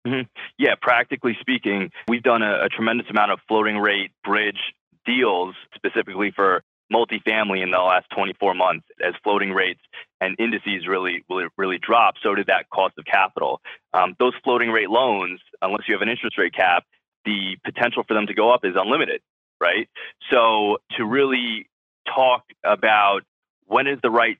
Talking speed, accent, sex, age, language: 170 wpm, American, male, 20-39, English